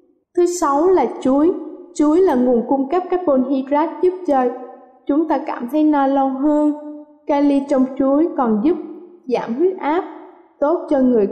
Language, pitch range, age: Vietnamese, 245-300 Hz, 20-39